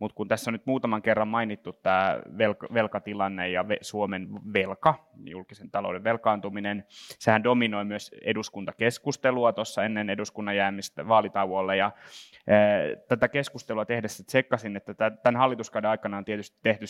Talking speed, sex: 140 wpm, male